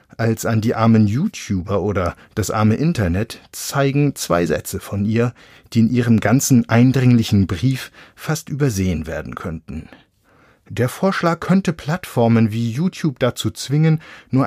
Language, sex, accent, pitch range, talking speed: German, male, German, 100-145 Hz, 135 wpm